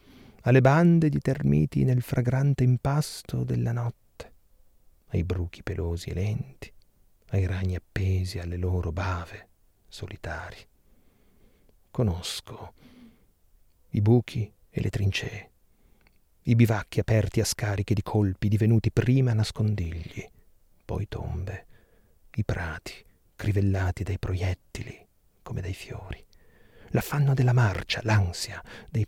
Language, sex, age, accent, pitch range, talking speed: Italian, male, 40-59, native, 90-120 Hz, 105 wpm